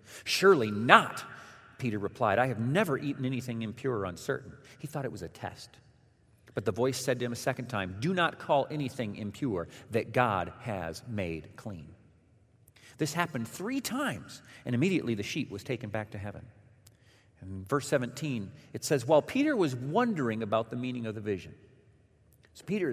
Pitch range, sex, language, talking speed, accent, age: 110-145 Hz, male, English, 175 wpm, American, 40-59